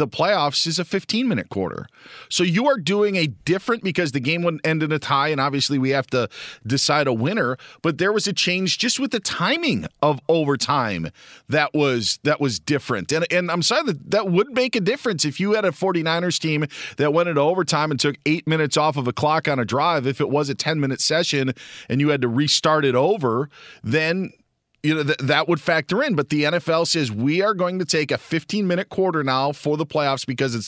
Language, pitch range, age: English, 130-165 Hz, 40-59